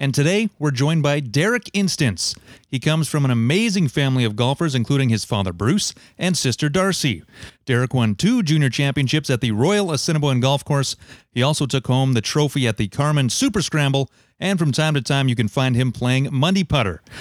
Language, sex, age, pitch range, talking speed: English, male, 30-49, 115-145 Hz, 195 wpm